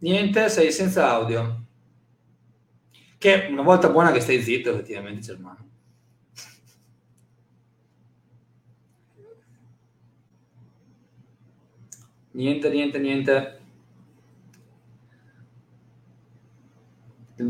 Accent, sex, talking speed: native, male, 60 wpm